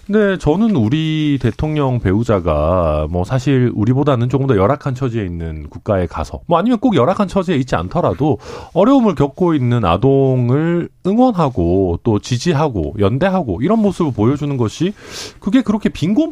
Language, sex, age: Korean, male, 40-59